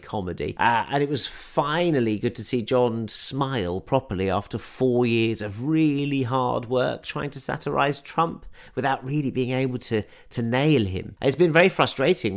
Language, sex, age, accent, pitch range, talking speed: English, male, 40-59, British, 110-145 Hz, 170 wpm